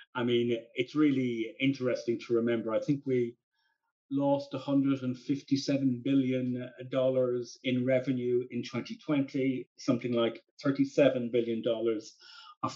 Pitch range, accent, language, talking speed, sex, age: 115-140 Hz, British, English, 105 wpm, male, 40-59